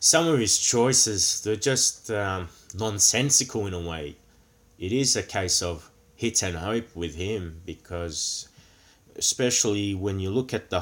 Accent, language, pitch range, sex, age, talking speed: Australian, English, 90-110 Hz, male, 30-49, 155 wpm